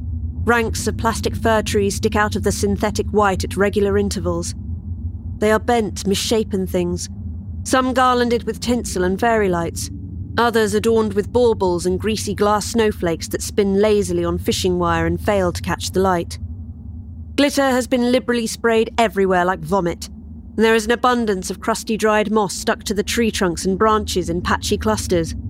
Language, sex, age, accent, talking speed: English, female, 30-49, British, 170 wpm